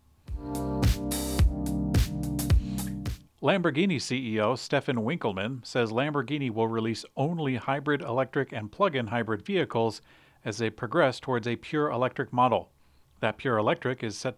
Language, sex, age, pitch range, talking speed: English, male, 40-59, 110-135 Hz, 115 wpm